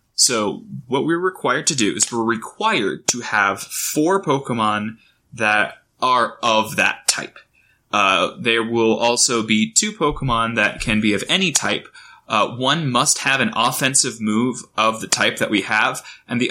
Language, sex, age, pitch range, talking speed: English, male, 20-39, 105-125 Hz, 165 wpm